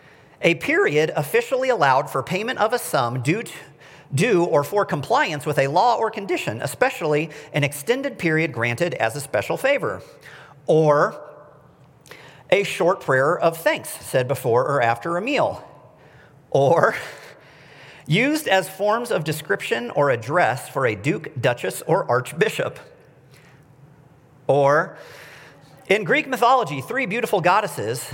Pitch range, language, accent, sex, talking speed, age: 135-185 Hz, English, American, male, 130 wpm, 50-69